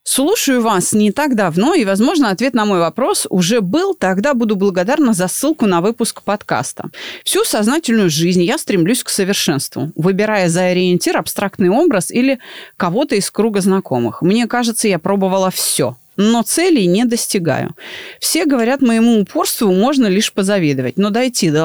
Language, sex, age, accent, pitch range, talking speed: Russian, female, 30-49, native, 185-270 Hz, 160 wpm